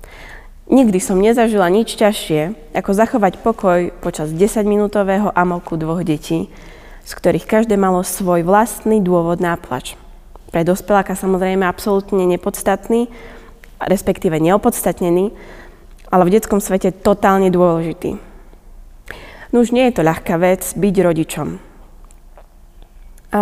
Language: Slovak